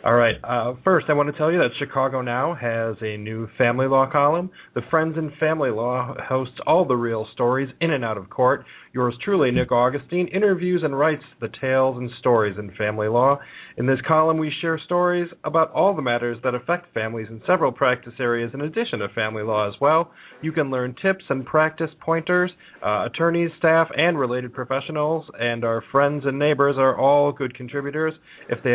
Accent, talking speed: American, 200 wpm